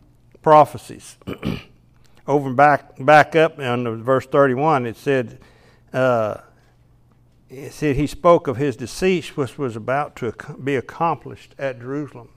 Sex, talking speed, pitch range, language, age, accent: male, 125 wpm, 125-155 Hz, English, 60-79, American